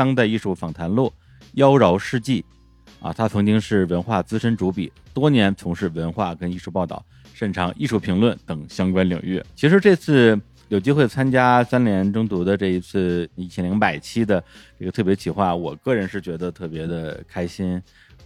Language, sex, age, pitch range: Chinese, male, 20-39, 85-105 Hz